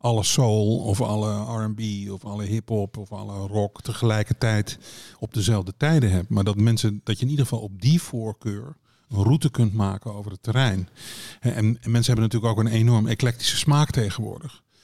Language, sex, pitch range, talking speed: Dutch, male, 105-120 Hz, 180 wpm